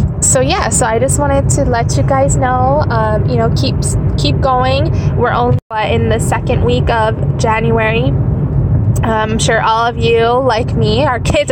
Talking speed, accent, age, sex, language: 180 wpm, American, 10-29, female, English